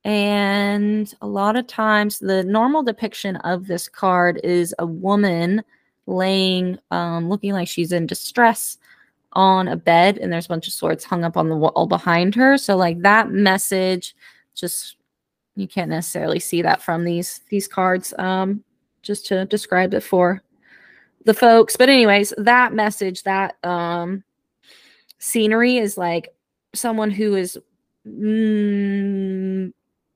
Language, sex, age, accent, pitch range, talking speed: English, female, 20-39, American, 175-215 Hz, 145 wpm